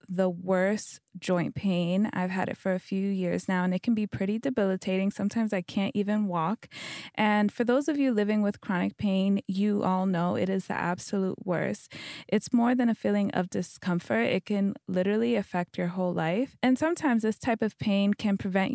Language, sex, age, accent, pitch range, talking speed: English, female, 20-39, American, 185-220 Hz, 200 wpm